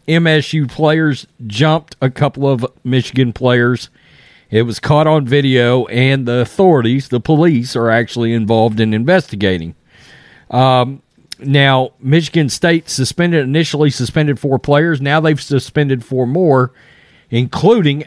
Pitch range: 130-160 Hz